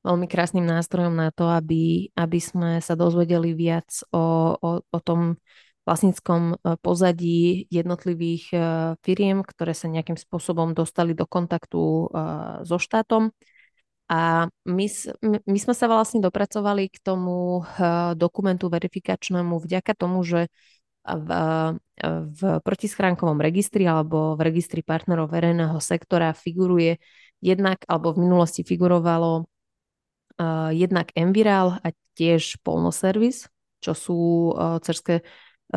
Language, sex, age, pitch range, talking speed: Slovak, female, 20-39, 165-185 Hz, 110 wpm